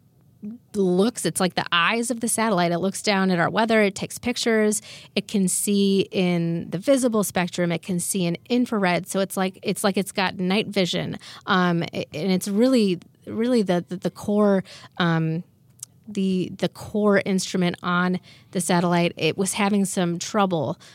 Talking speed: 170 wpm